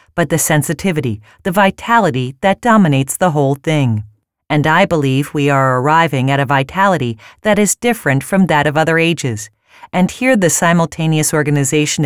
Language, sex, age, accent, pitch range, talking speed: English, female, 40-59, American, 140-190 Hz, 160 wpm